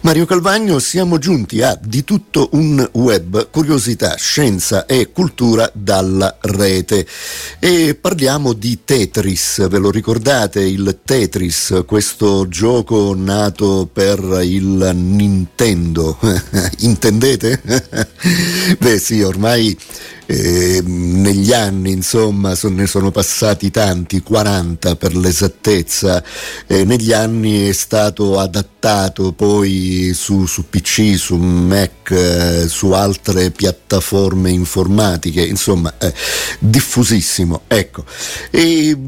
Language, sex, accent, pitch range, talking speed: Italian, male, native, 95-115 Hz, 95 wpm